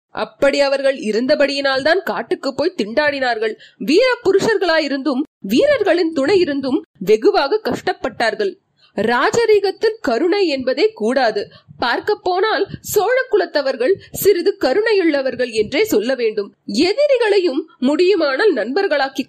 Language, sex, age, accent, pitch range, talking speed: Tamil, female, 30-49, native, 270-405 Hz, 95 wpm